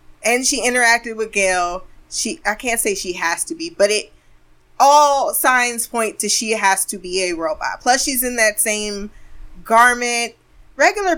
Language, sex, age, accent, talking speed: English, female, 20-39, American, 170 wpm